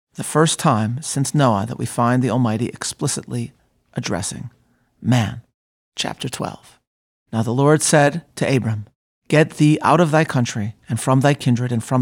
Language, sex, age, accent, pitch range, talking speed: English, male, 40-59, American, 120-160 Hz, 165 wpm